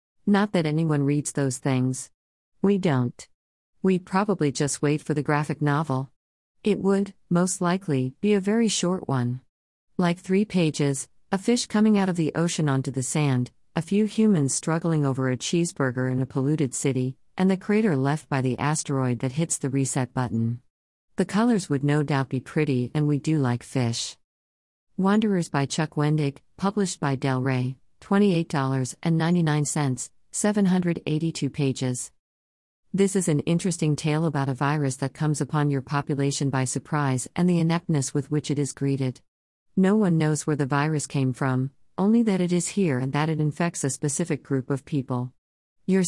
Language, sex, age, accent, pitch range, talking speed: English, female, 50-69, American, 130-170 Hz, 170 wpm